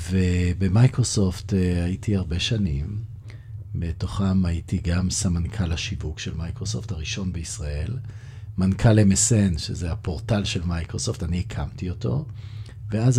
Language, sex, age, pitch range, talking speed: Hebrew, male, 50-69, 90-110 Hz, 105 wpm